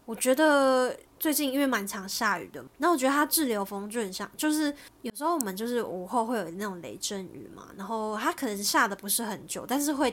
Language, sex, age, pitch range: Chinese, female, 10-29, 200-260 Hz